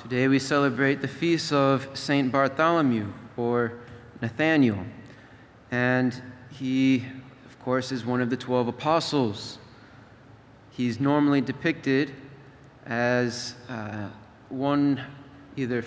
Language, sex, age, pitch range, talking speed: English, male, 30-49, 115-135 Hz, 100 wpm